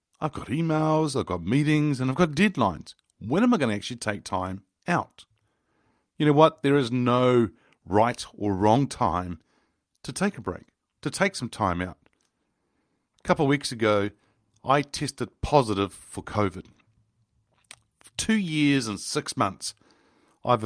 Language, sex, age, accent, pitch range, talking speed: English, male, 50-69, Australian, 105-140 Hz, 160 wpm